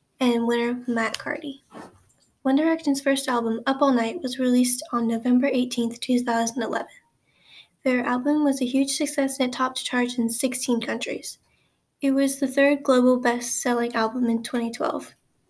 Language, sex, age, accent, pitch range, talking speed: English, female, 10-29, American, 235-265 Hz, 150 wpm